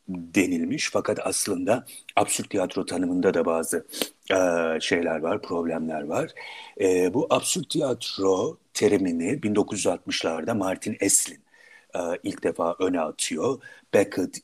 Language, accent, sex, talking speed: Turkish, native, male, 110 wpm